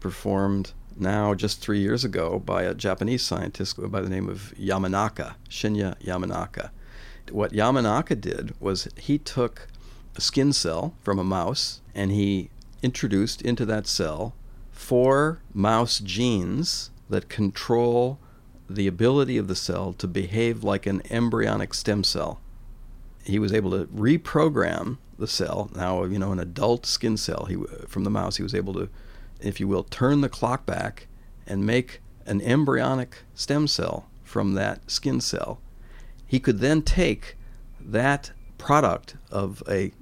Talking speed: 150 wpm